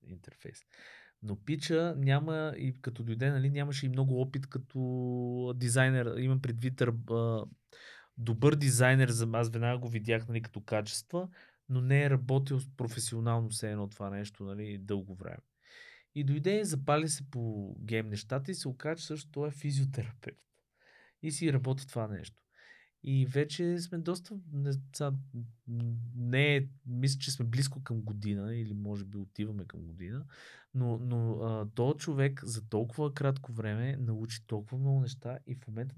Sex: male